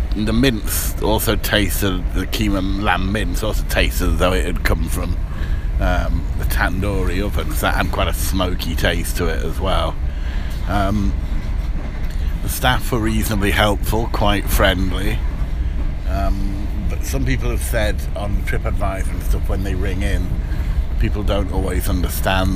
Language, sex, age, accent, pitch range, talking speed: English, male, 50-69, British, 75-95 Hz, 150 wpm